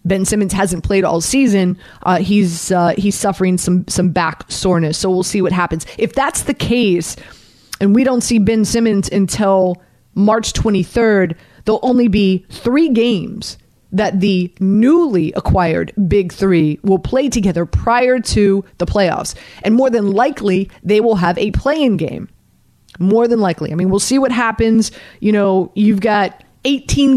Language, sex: English, female